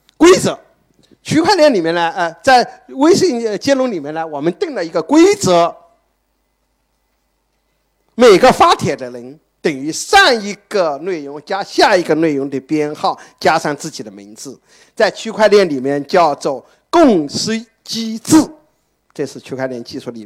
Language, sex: Chinese, male